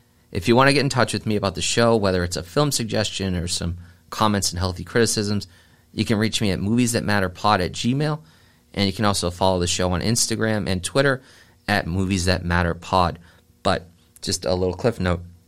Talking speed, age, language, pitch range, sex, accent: 215 wpm, 30-49, English, 85-105 Hz, male, American